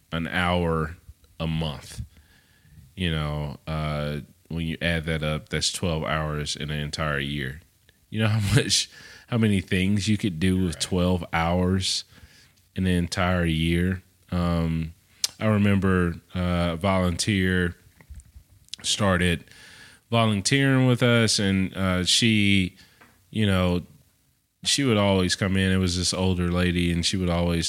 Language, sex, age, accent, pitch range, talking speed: English, male, 30-49, American, 85-100 Hz, 140 wpm